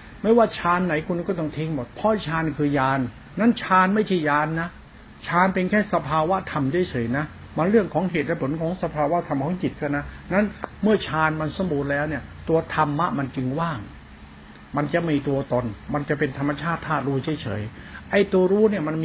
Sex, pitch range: male, 140-185 Hz